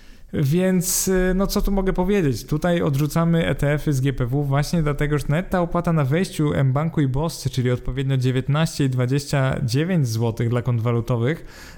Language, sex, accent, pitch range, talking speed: Polish, male, native, 130-165 Hz, 150 wpm